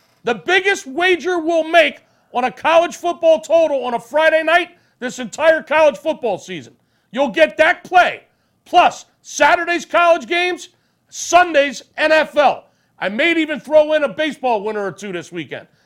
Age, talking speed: 40-59, 155 wpm